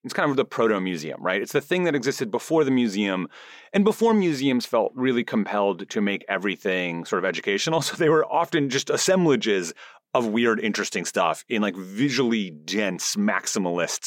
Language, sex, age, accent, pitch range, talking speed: English, male, 30-49, American, 110-170 Hz, 175 wpm